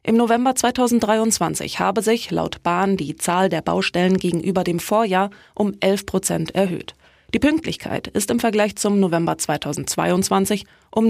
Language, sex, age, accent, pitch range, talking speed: German, female, 20-39, German, 175-215 Hz, 145 wpm